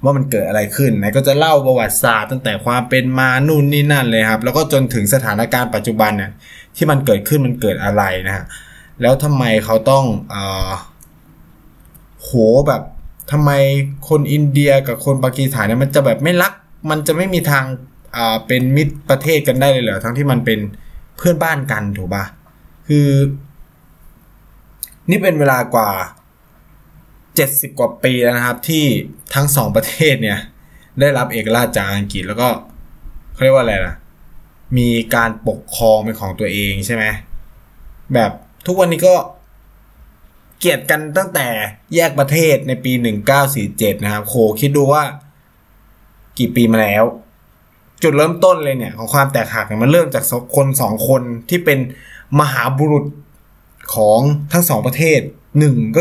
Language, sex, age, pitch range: Thai, male, 20-39, 110-145 Hz